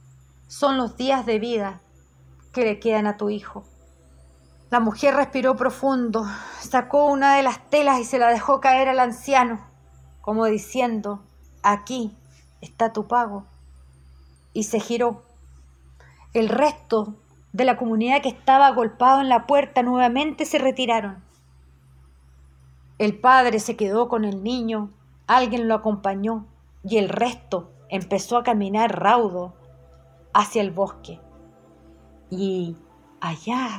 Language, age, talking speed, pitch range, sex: Spanish, 40-59, 130 wpm, 180-260 Hz, female